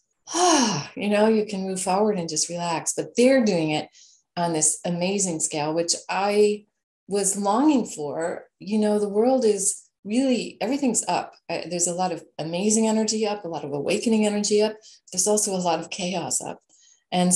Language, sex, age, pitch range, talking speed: English, female, 30-49, 165-210 Hz, 180 wpm